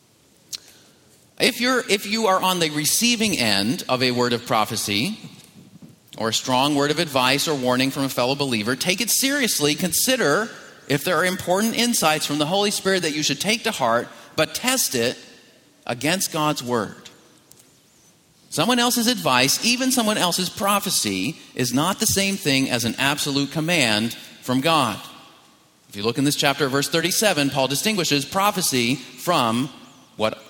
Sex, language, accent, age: male, English, American, 40-59